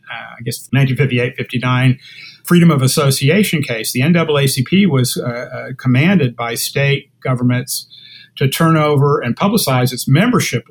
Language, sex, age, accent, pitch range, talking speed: English, male, 50-69, American, 125-165 Hz, 140 wpm